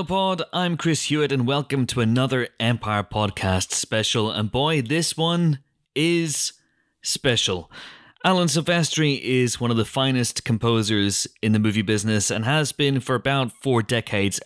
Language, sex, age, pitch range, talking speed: English, male, 30-49, 105-145 Hz, 150 wpm